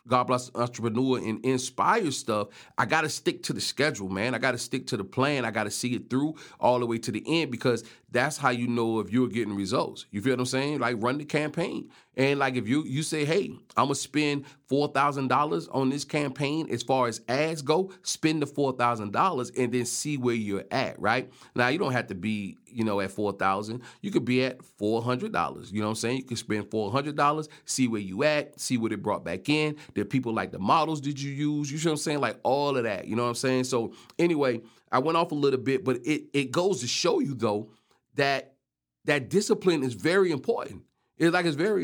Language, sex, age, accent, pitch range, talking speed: English, male, 40-59, American, 120-150 Hz, 235 wpm